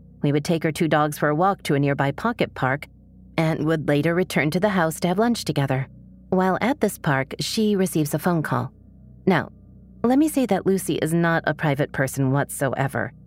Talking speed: 205 wpm